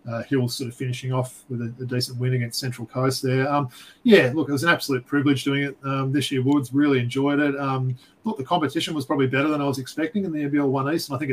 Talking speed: 265 wpm